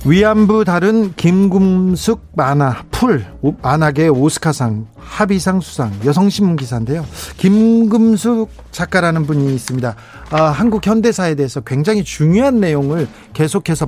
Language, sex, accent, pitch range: Korean, male, native, 125-185 Hz